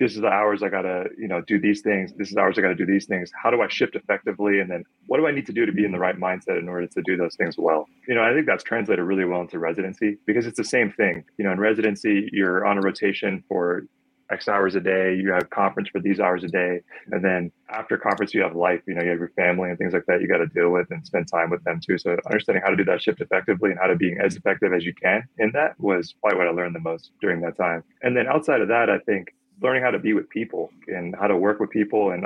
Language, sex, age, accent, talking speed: English, male, 20-39, American, 300 wpm